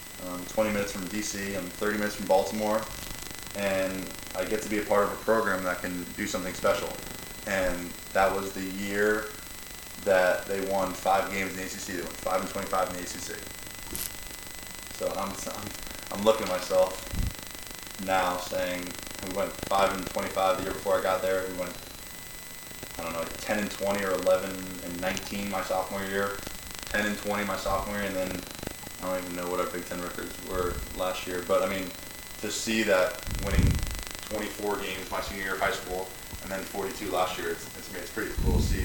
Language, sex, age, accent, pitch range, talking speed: English, male, 20-39, American, 90-100 Hz, 200 wpm